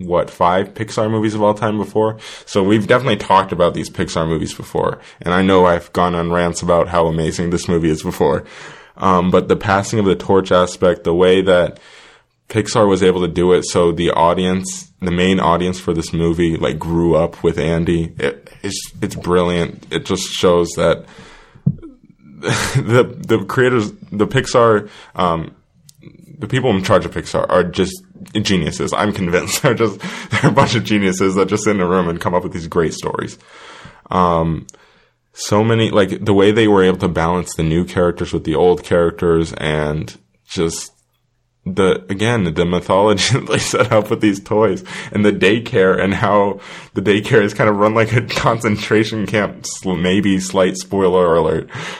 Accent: American